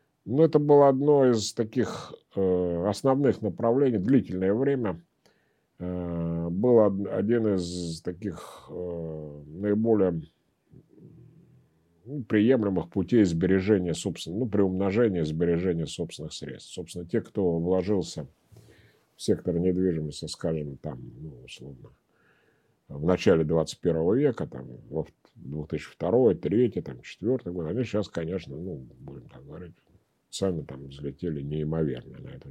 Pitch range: 85-115 Hz